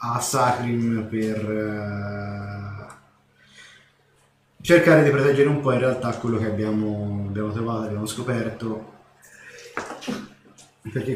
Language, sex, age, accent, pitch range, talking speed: Italian, male, 20-39, native, 105-125 Hz, 100 wpm